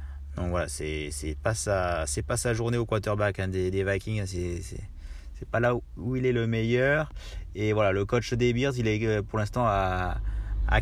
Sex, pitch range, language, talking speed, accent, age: male, 85-110 Hz, French, 220 wpm, French, 30-49